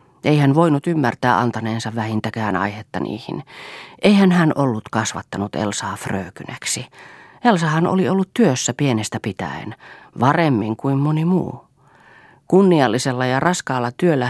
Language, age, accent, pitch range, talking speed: Finnish, 40-59, native, 115-145 Hz, 120 wpm